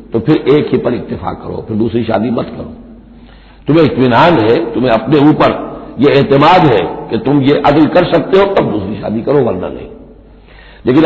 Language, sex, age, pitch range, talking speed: Hindi, male, 60-79, 130-155 Hz, 190 wpm